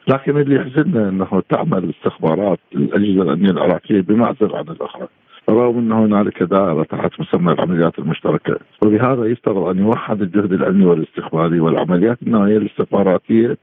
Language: Arabic